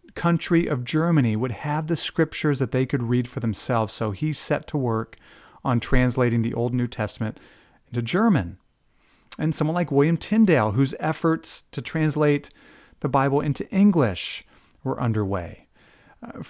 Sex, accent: male, American